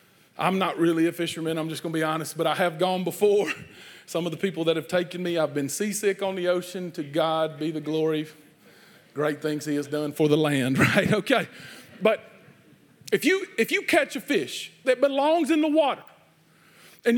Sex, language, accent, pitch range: male, English, American, 155-245 Hz